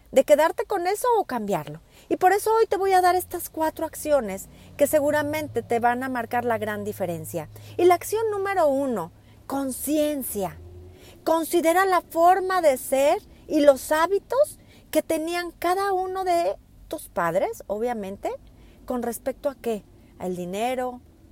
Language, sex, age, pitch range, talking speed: Spanish, female, 40-59, 215-325 Hz, 155 wpm